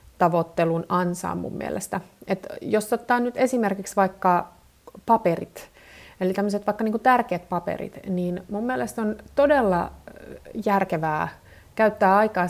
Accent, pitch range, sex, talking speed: native, 170-210 Hz, female, 120 wpm